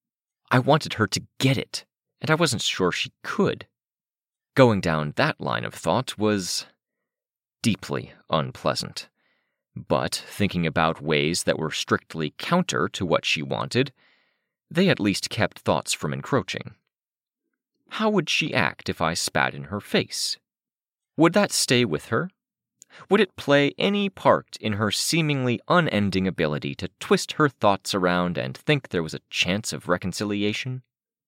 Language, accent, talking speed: English, American, 150 wpm